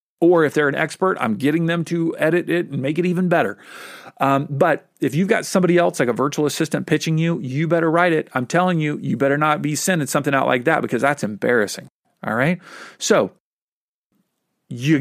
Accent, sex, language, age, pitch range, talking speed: American, male, English, 40-59, 135-175 Hz, 210 wpm